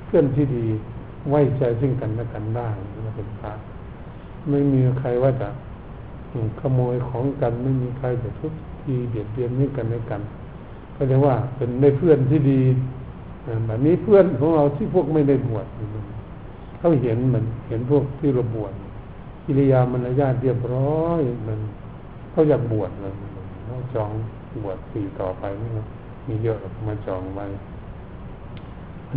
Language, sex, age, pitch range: Thai, male, 60-79, 110-135 Hz